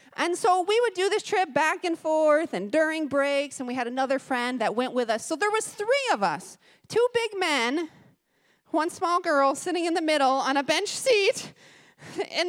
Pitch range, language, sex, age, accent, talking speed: 230-345 Hz, English, female, 30-49, American, 205 wpm